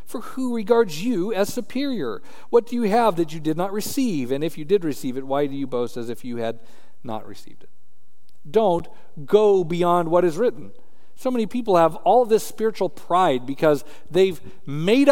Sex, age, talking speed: male, 50-69, 195 wpm